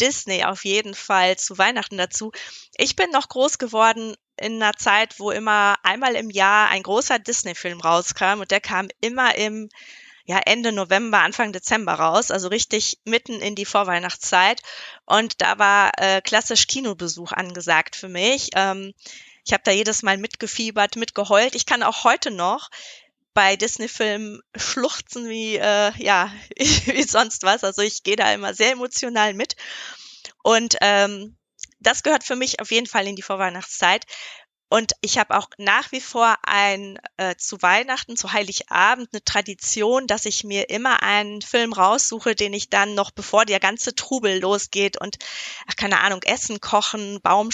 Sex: female